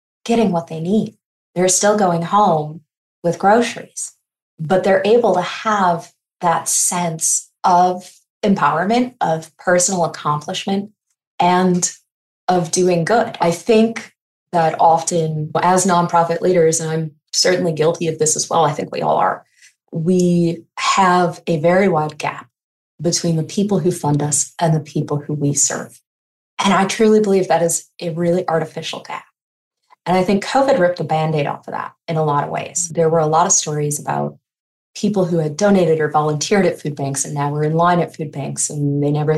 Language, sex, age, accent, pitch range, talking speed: English, female, 20-39, American, 155-180 Hz, 175 wpm